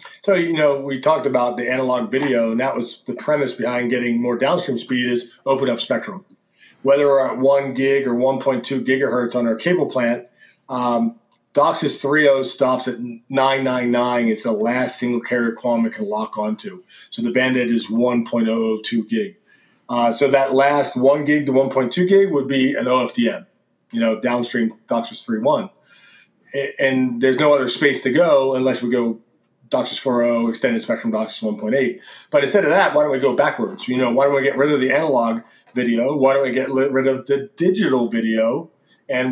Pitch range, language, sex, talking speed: 120-140 Hz, English, male, 185 wpm